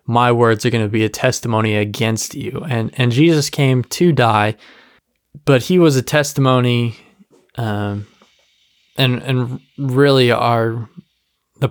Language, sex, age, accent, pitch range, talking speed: English, male, 20-39, American, 115-140 Hz, 140 wpm